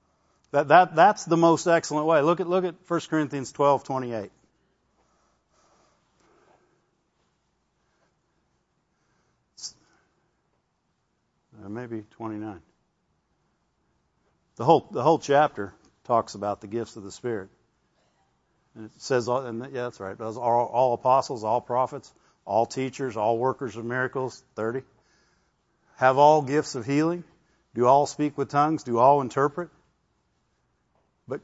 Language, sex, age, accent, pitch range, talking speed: English, male, 50-69, American, 120-165 Hz, 120 wpm